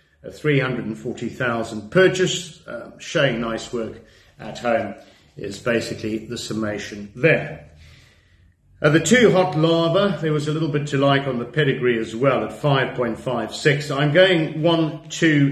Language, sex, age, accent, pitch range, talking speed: English, male, 50-69, British, 115-160 Hz, 140 wpm